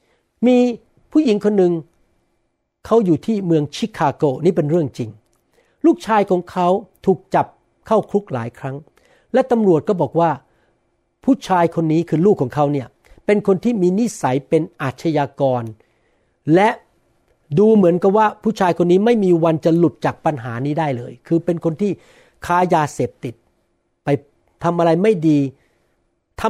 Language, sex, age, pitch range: Thai, male, 60-79, 145-205 Hz